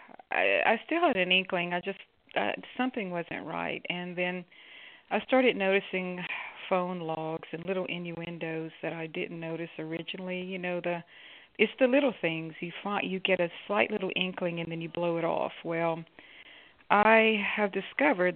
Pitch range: 165-190 Hz